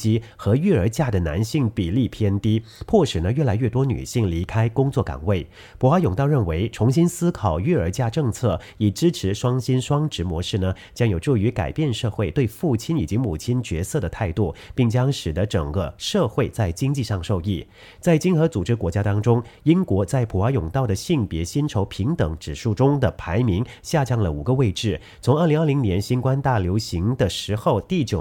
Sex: male